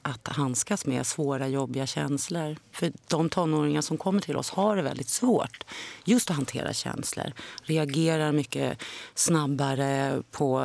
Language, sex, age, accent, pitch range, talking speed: Swedish, female, 30-49, native, 135-155 Hz, 140 wpm